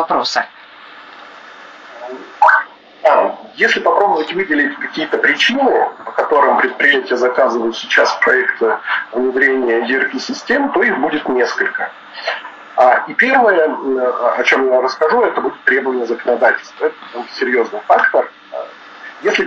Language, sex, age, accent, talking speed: Russian, male, 40-59, native, 100 wpm